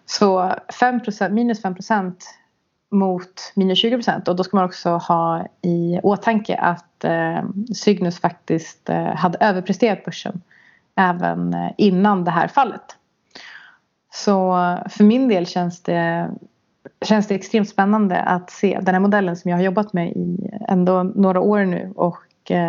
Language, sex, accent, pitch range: Swedish, female, native, 175-205 Hz